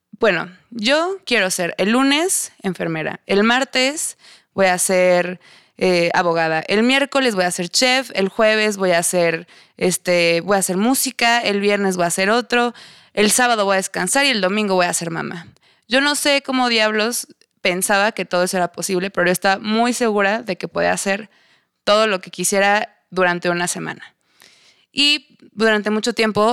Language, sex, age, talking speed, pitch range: Spanish, female, 20-39, 180 wpm, 180-220 Hz